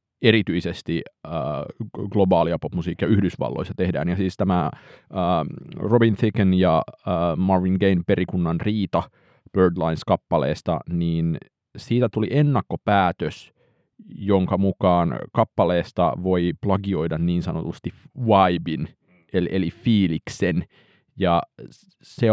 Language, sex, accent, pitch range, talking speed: Finnish, male, native, 85-105 Hz, 95 wpm